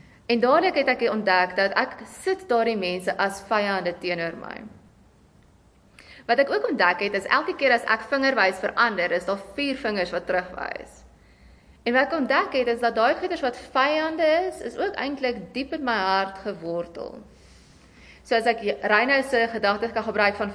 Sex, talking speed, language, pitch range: female, 180 wpm, English, 195-260 Hz